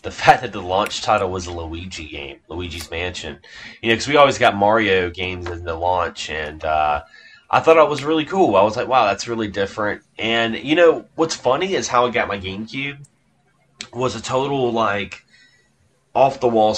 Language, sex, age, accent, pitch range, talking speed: English, male, 30-49, American, 90-120 Hz, 195 wpm